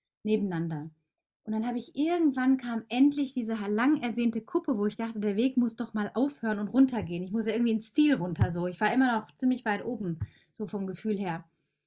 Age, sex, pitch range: 30-49, female, 205-260 Hz